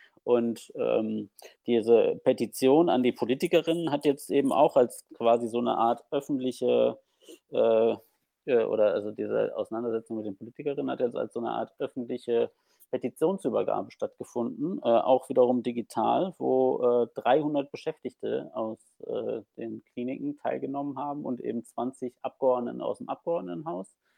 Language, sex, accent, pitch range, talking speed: German, male, German, 115-155 Hz, 135 wpm